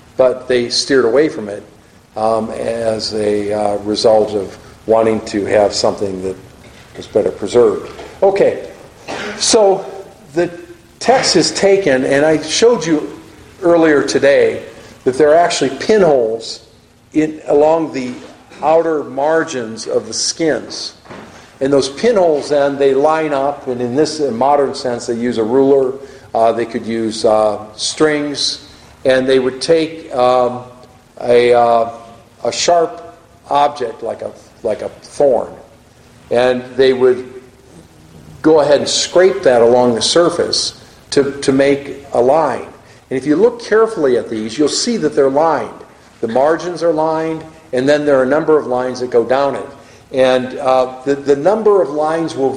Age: 50-69